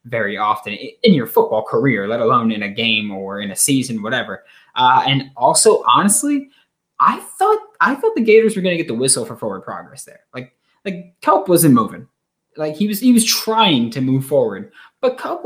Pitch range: 115-180 Hz